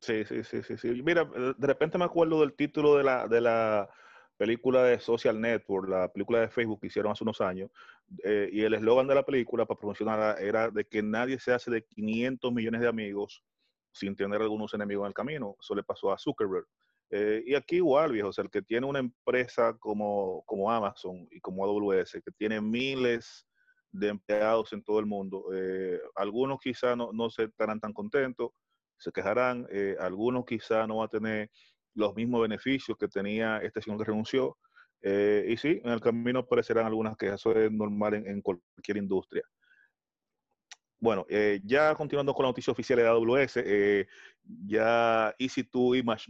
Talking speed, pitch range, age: 185 wpm, 105-125 Hz, 30-49